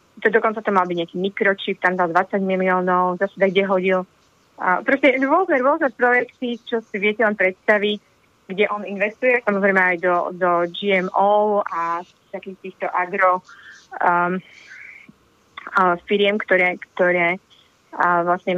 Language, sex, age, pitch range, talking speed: Slovak, female, 20-39, 185-210 Hz, 130 wpm